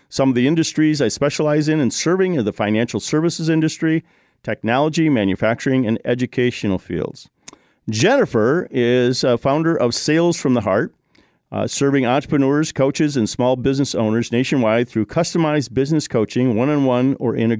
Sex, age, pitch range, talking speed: male, 50-69, 120-160 Hz, 155 wpm